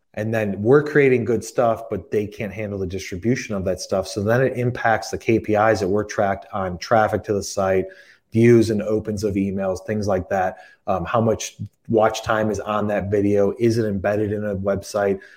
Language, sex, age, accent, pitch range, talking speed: English, male, 30-49, American, 100-115 Hz, 205 wpm